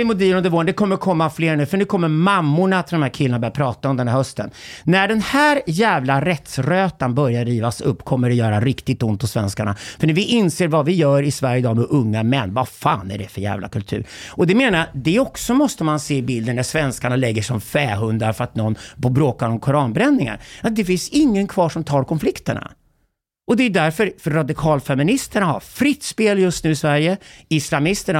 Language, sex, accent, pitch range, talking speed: Swedish, male, native, 125-185 Hz, 215 wpm